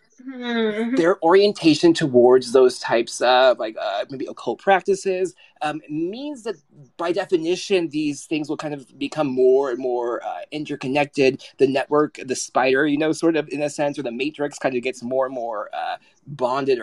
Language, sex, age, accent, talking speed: English, male, 20-39, American, 175 wpm